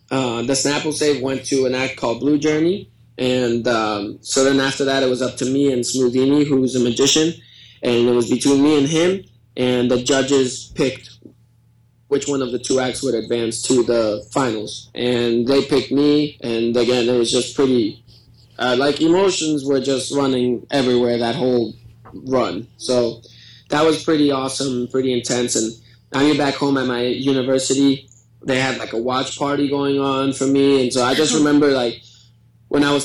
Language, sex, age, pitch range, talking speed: English, male, 20-39, 120-140 Hz, 185 wpm